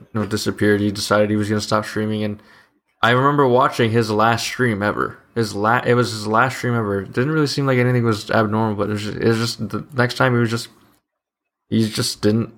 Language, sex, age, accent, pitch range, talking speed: English, male, 20-39, American, 100-120 Hz, 235 wpm